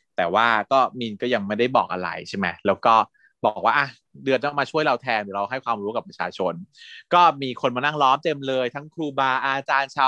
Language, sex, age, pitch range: Thai, male, 20-39, 120-170 Hz